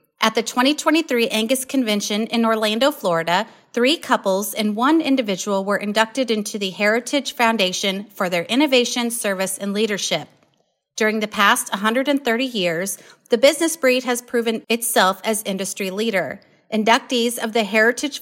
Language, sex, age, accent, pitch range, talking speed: English, female, 30-49, American, 205-260 Hz, 140 wpm